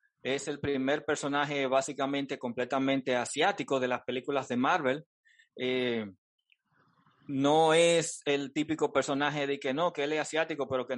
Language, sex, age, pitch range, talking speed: Spanish, male, 30-49, 130-155 Hz, 150 wpm